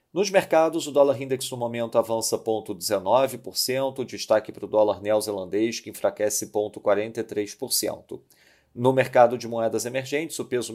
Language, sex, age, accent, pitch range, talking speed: Portuguese, male, 40-59, Brazilian, 105-125 Hz, 135 wpm